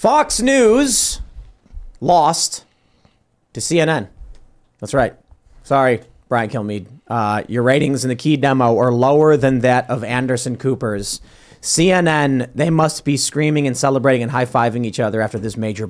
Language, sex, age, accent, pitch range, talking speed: English, male, 30-49, American, 130-190 Hz, 145 wpm